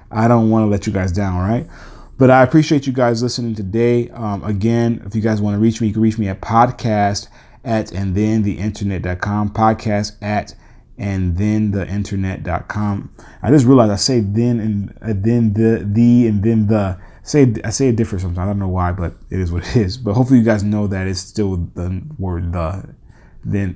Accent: American